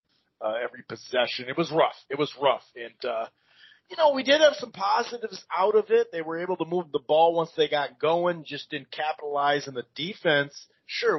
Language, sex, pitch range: English, male, 140-200 Hz